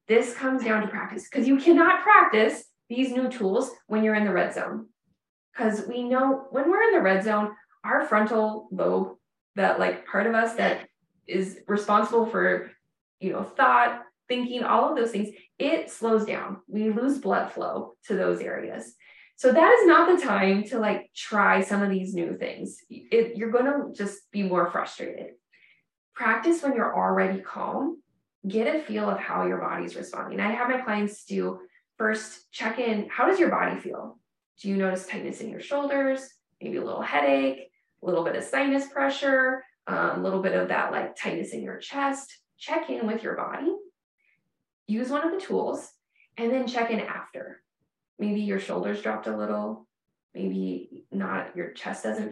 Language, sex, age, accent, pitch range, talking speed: English, female, 20-39, American, 190-260 Hz, 180 wpm